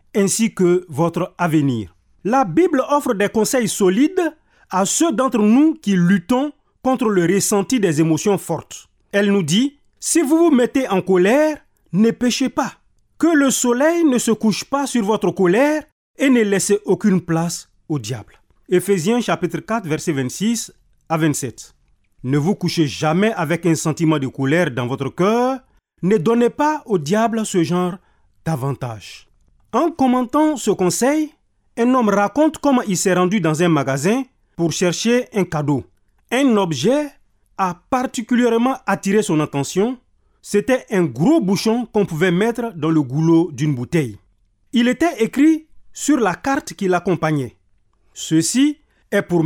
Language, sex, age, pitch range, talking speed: French, male, 40-59, 165-255 Hz, 155 wpm